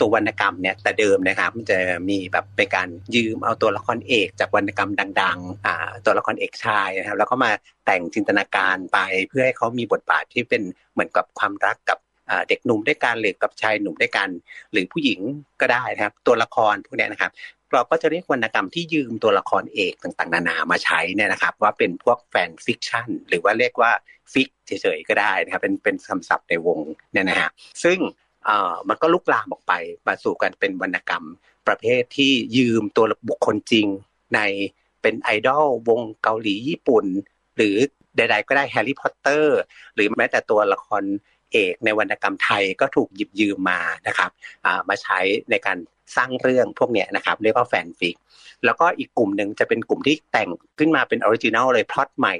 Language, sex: Thai, male